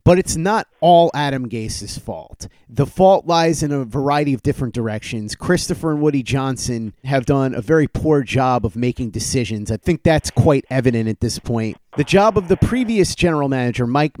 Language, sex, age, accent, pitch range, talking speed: English, male, 30-49, American, 125-155 Hz, 190 wpm